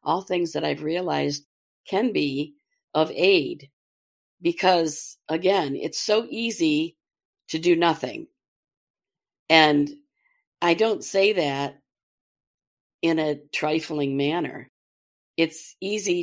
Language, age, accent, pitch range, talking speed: English, 50-69, American, 140-175 Hz, 105 wpm